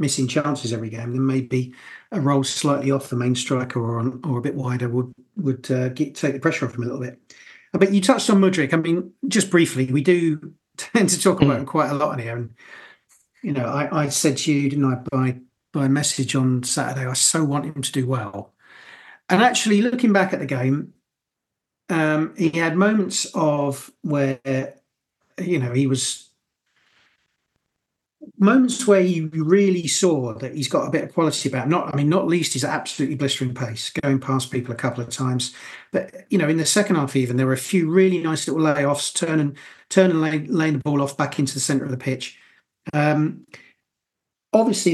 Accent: British